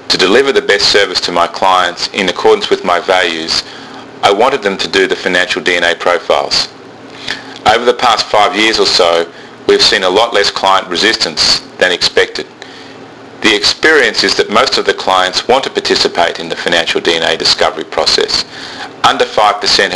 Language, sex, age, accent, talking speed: English, male, 30-49, Australian, 170 wpm